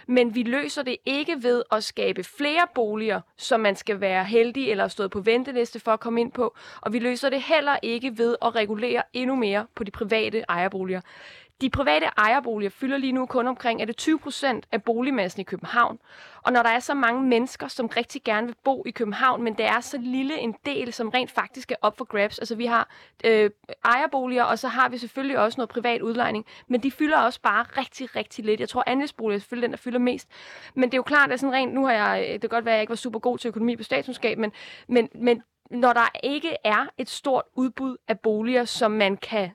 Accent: native